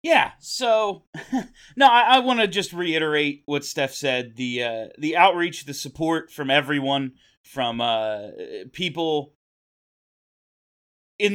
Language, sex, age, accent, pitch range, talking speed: English, male, 30-49, American, 135-205 Hz, 125 wpm